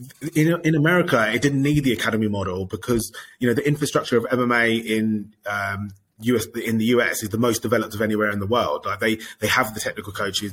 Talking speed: 215 wpm